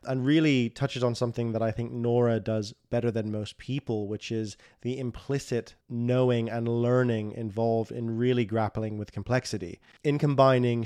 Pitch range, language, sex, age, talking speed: 110-130 Hz, English, male, 20-39, 160 wpm